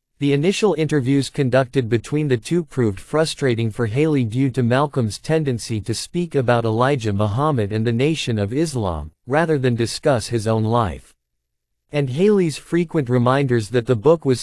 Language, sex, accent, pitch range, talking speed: English, male, American, 115-145 Hz, 160 wpm